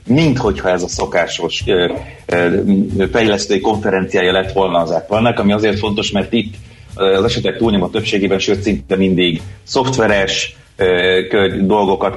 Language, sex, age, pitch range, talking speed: Hungarian, male, 30-49, 90-110 Hz, 130 wpm